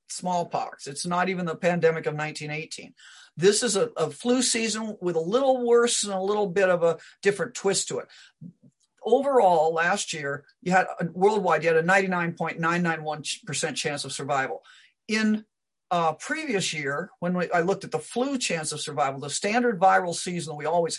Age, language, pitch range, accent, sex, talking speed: 50-69, English, 165-235 Hz, American, male, 180 wpm